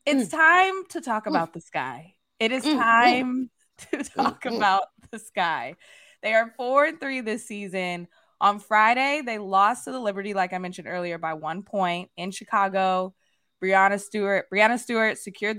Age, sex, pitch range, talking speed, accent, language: 20-39, female, 205-295 Hz, 160 wpm, American, English